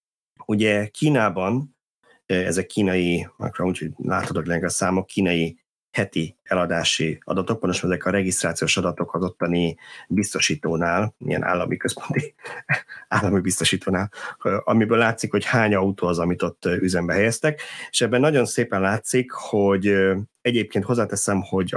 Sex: male